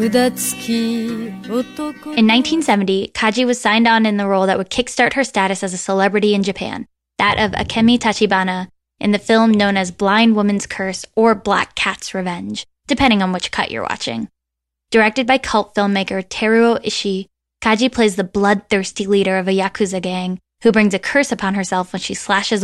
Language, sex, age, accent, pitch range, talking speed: English, female, 10-29, American, 190-225 Hz, 170 wpm